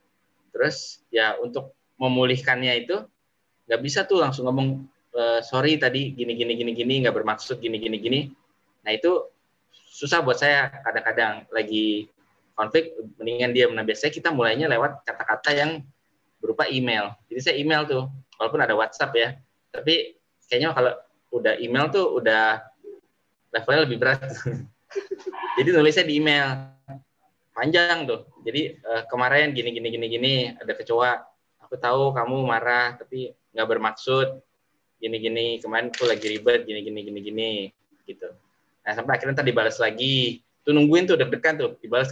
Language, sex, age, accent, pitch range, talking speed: Indonesian, male, 20-39, native, 115-160 Hz, 145 wpm